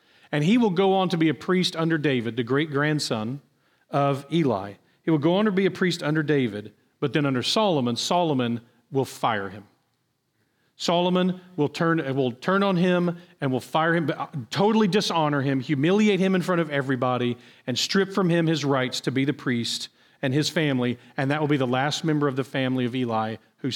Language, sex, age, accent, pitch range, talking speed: English, male, 40-59, American, 125-165 Hz, 200 wpm